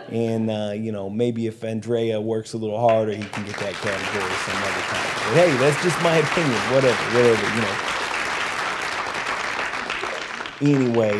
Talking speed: 155 wpm